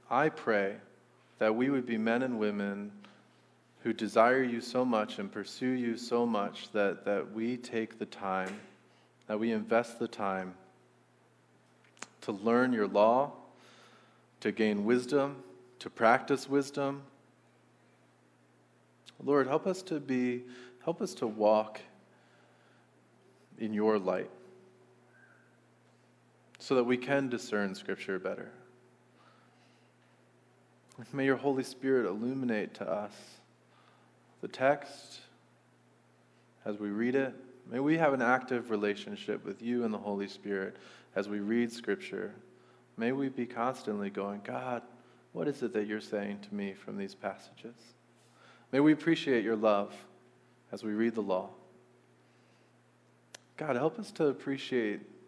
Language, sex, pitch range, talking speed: English, male, 105-130 Hz, 130 wpm